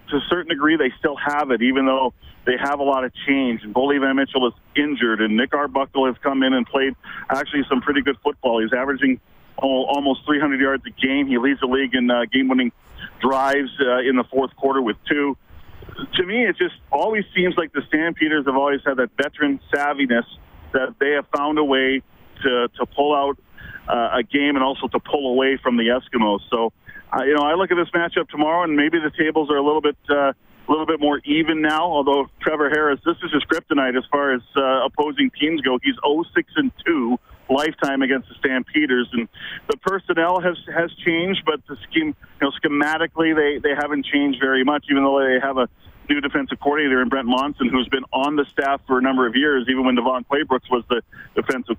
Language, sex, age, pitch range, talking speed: English, male, 40-59, 130-155 Hz, 220 wpm